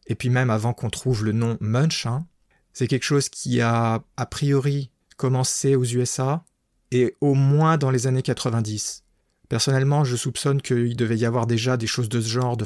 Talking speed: 205 wpm